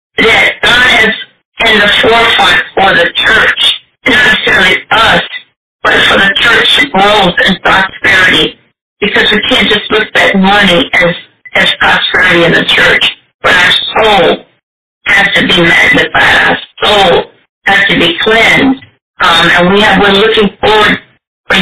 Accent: American